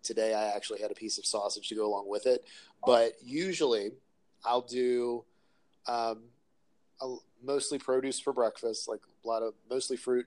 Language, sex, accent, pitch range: English, male, American, 110-140 Hz